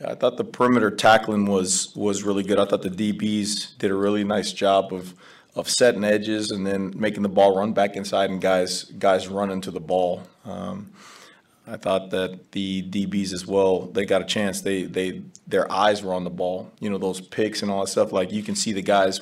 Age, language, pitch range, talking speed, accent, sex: 30-49, English, 95-105 Hz, 220 wpm, American, male